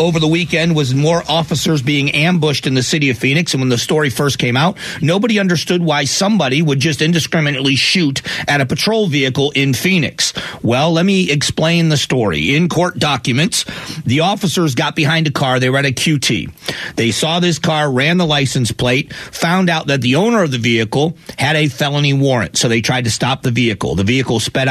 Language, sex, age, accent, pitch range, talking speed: English, male, 40-59, American, 130-165 Hz, 205 wpm